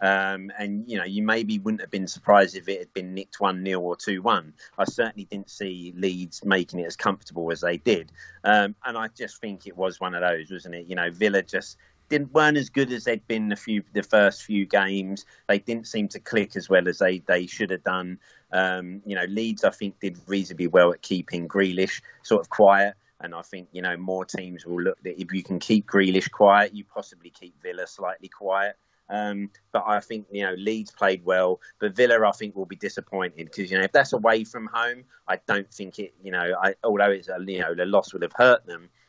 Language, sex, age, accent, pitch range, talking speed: English, male, 30-49, British, 90-105 Hz, 230 wpm